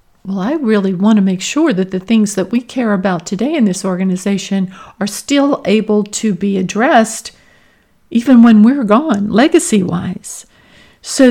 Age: 50-69